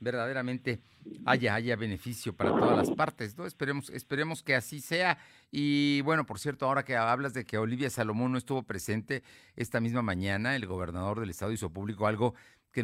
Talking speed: 180 wpm